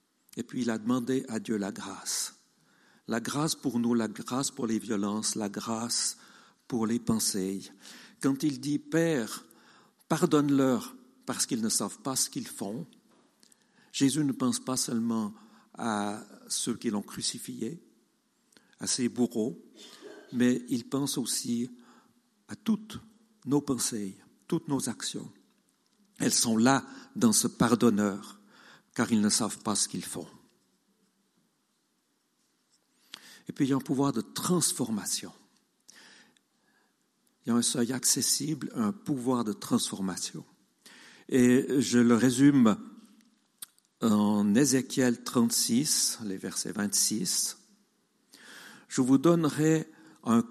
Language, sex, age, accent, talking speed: French, male, 50-69, French, 130 wpm